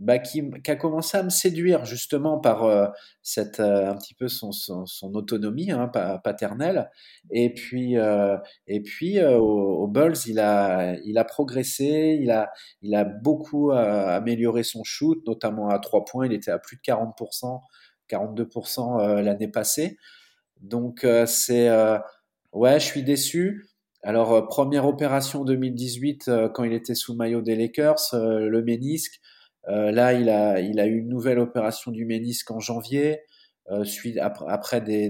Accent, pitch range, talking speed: French, 105-130 Hz, 160 wpm